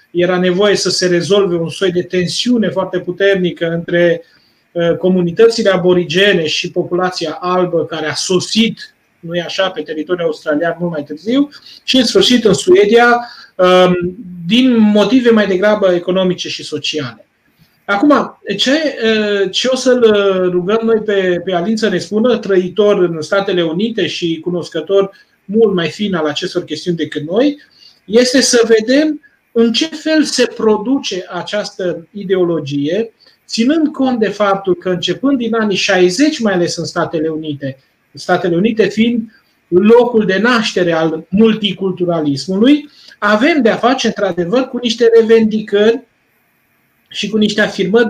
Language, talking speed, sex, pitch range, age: Romanian, 140 wpm, male, 175-230 Hz, 30-49